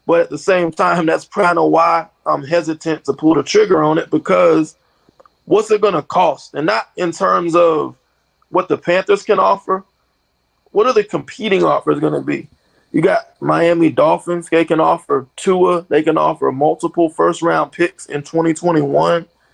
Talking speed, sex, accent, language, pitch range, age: 175 wpm, male, American, English, 155-185 Hz, 20-39